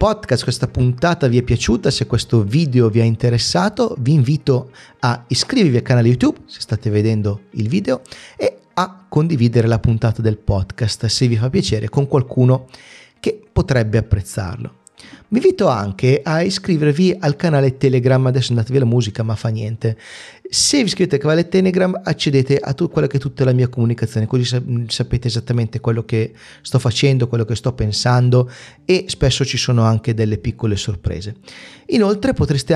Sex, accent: male, native